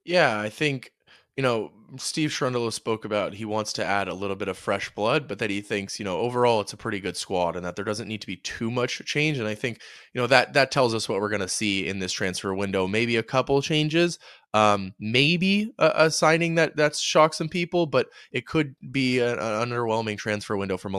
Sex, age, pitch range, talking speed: male, 20-39, 100-130 Hz, 240 wpm